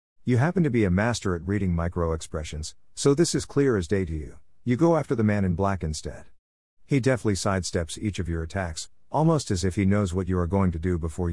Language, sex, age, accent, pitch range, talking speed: English, male, 50-69, American, 85-120 Hz, 235 wpm